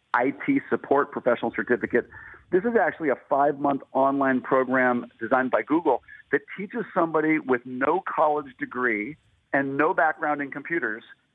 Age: 40-59